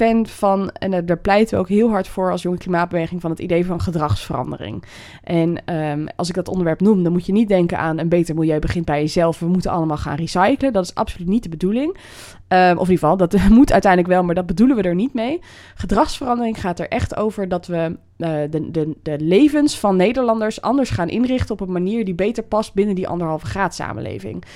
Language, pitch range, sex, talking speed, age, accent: Dutch, 170-215 Hz, female, 215 wpm, 20-39, Dutch